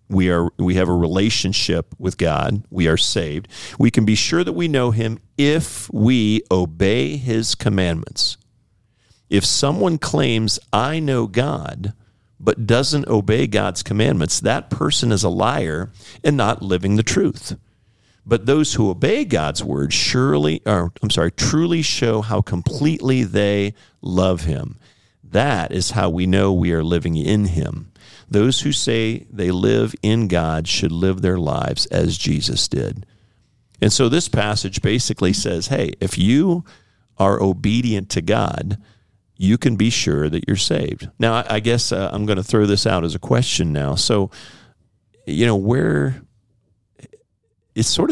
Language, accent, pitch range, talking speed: English, American, 95-120 Hz, 155 wpm